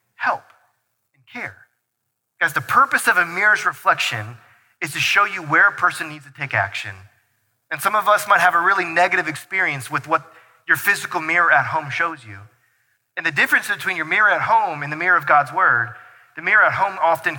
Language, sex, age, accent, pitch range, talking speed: English, male, 30-49, American, 125-170 Hz, 205 wpm